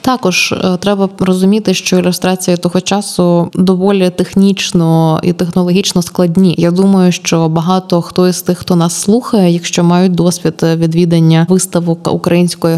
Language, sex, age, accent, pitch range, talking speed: Ukrainian, female, 20-39, native, 165-190 Hz, 130 wpm